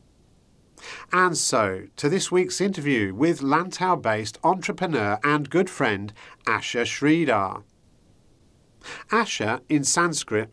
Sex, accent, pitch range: male, British, 105-160 Hz